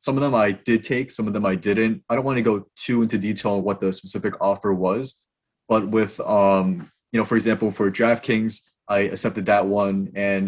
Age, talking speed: 20-39, 225 wpm